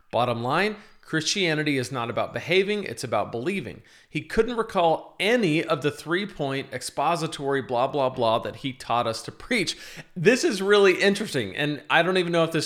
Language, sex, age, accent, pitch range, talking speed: English, male, 40-59, American, 130-170 Hz, 180 wpm